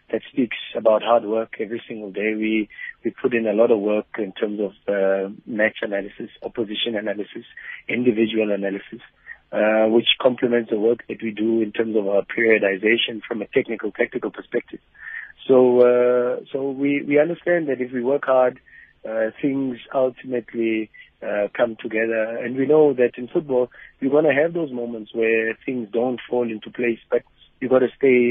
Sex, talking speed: male, 180 wpm